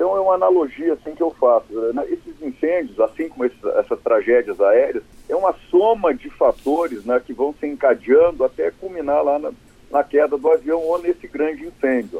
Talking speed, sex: 185 wpm, male